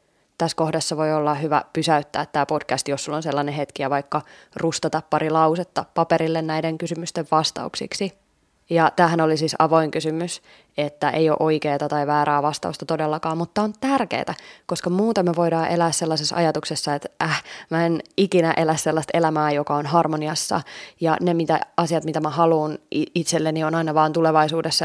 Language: Finnish